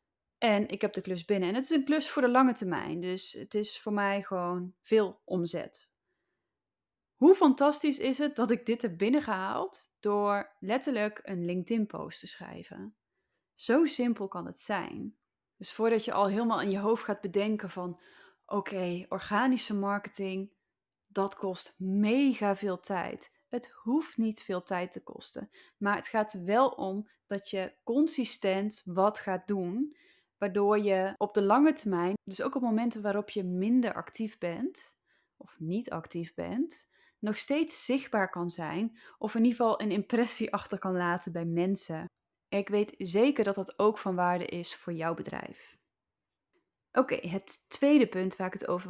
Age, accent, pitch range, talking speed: 10-29, Dutch, 190-235 Hz, 165 wpm